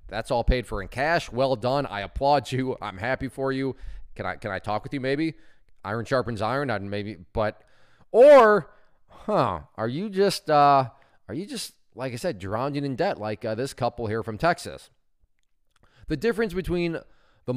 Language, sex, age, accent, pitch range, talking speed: English, male, 20-39, American, 115-160 Hz, 190 wpm